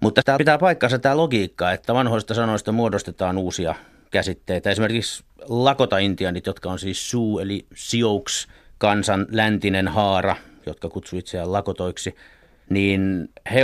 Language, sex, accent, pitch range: Finnish, male, native, 95-110 Hz